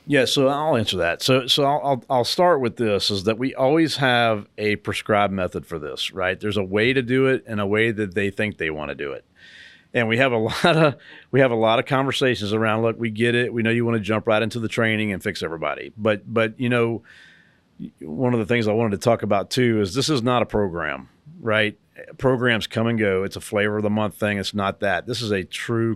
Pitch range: 105-125 Hz